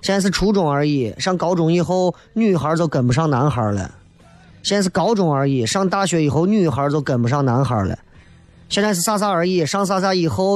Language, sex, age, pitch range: Chinese, male, 30-49, 130-195 Hz